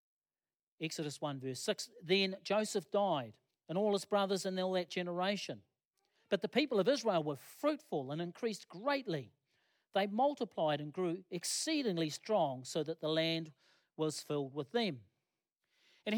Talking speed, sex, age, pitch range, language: 150 wpm, male, 40-59, 155-200 Hz, English